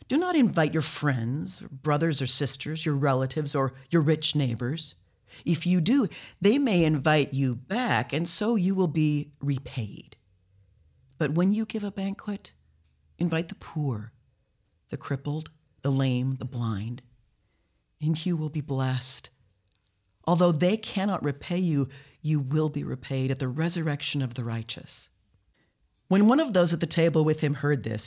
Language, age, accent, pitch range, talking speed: English, 40-59, American, 130-180 Hz, 160 wpm